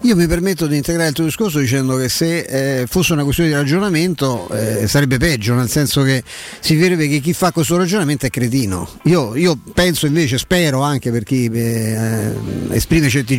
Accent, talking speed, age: native, 195 wpm, 50-69